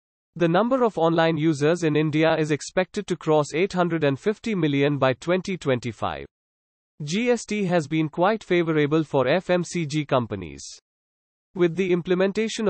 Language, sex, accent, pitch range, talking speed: English, male, Indian, 135-180 Hz, 125 wpm